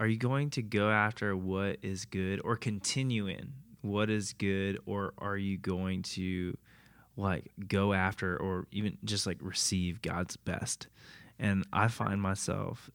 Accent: American